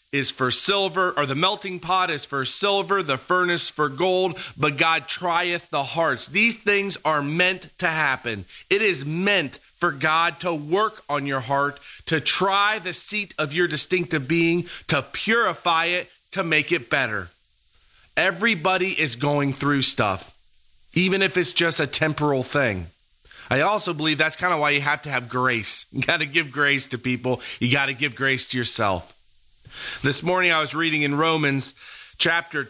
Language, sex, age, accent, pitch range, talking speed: English, male, 30-49, American, 135-175 Hz, 175 wpm